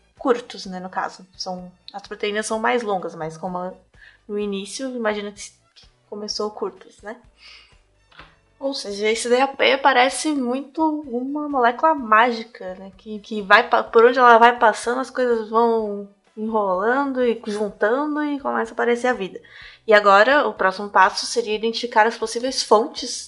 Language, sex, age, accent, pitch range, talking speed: Portuguese, female, 20-39, Brazilian, 200-245 Hz, 150 wpm